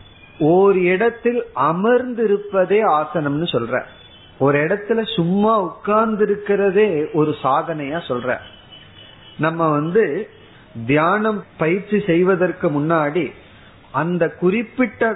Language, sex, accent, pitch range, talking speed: Tamil, male, native, 150-205 Hz, 80 wpm